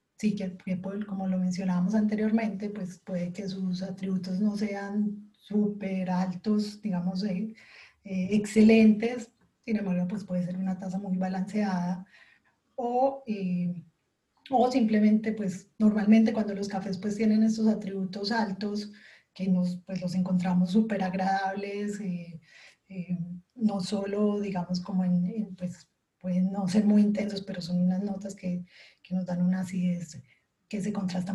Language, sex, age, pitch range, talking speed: English, female, 20-39, 185-210 Hz, 145 wpm